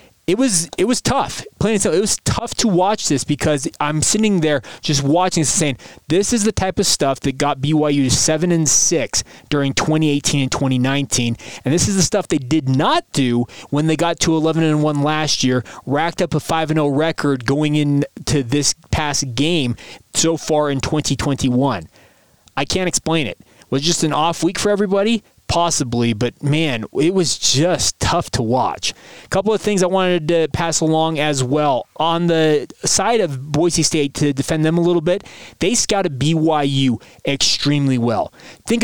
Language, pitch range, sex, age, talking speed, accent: English, 140-175 Hz, male, 20-39, 185 wpm, American